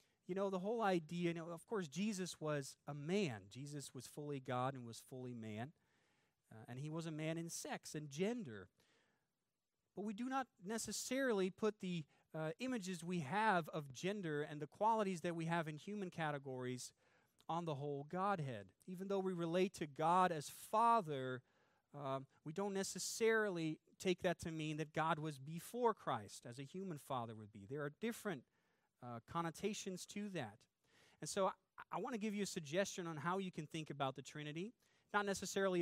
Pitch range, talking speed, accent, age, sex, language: 150-195 Hz, 180 wpm, American, 40-59, male, English